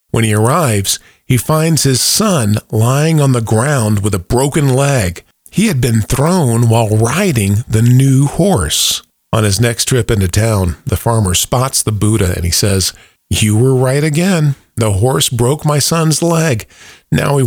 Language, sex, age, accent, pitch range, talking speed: English, male, 40-59, American, 105-135 Hz, 170 wpm